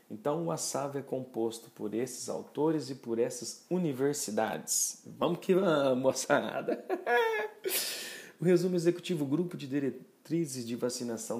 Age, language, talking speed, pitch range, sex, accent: 40-59, Portuguese, 130 wpm, 115-145 Hz, male, Brazilian